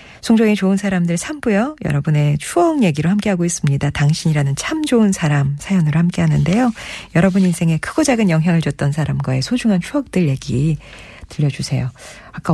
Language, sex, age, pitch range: Korean, female, 40-59, 150-210 Hz